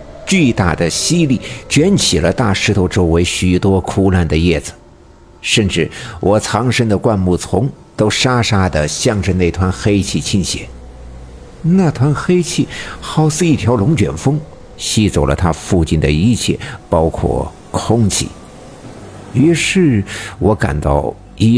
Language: Chinese